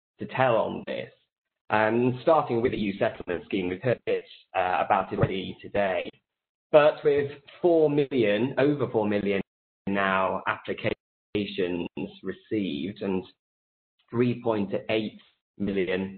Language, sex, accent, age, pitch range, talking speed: English, male, British, 20-39, 95-120 Hz, 120 wpm